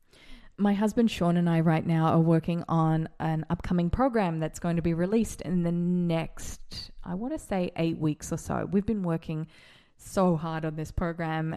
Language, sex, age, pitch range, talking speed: English, female, 20-39, 165-200 Hz, 190 wpm